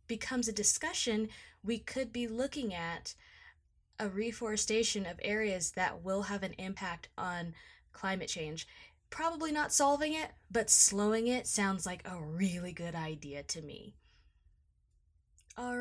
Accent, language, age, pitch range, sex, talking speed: American, English, 20-39, 195-250 Hz, female, 135 wpm